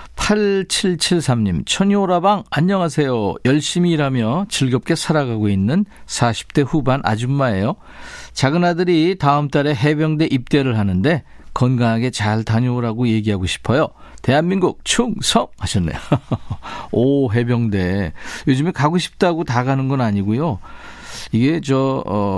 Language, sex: Korean, male